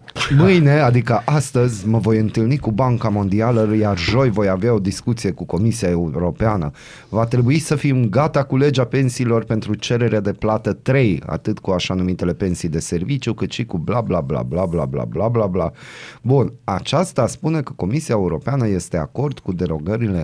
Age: 30-49